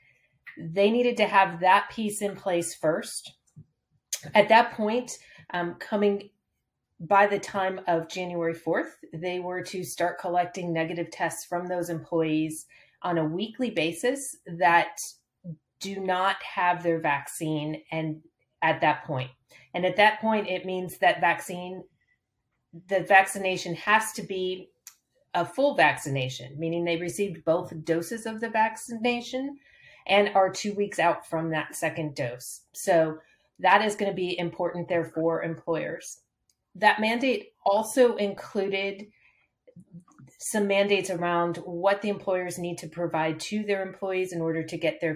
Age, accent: 30-49, American